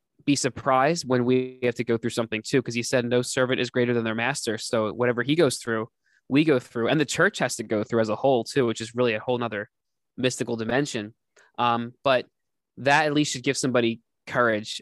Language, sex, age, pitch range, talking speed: English, male, 20-39, 115-135 Hz, 225 wpm